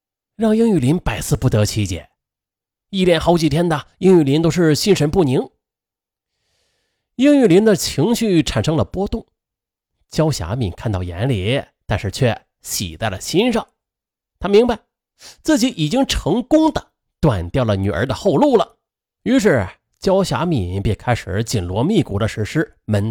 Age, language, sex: 30-49, Chinese, male